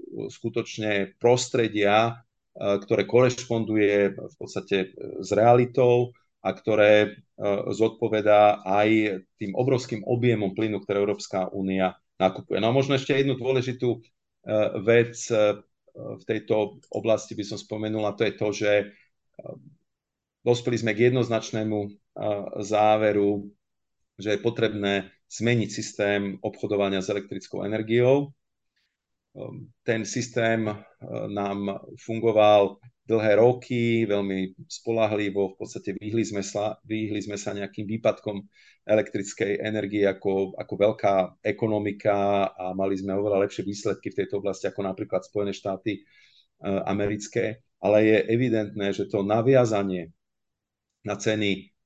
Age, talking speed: 40-59, 110 wpm